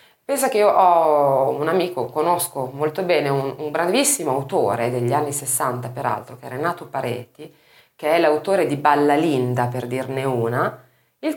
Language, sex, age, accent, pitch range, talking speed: Italian, female, 30-49, native, 130-215 Hz, 165 wpm